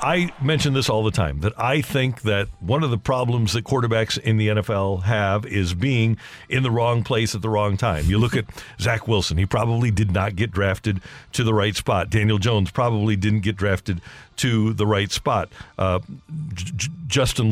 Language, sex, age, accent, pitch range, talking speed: English, male, 50-69, American, 110-135 Hz, 195 wpm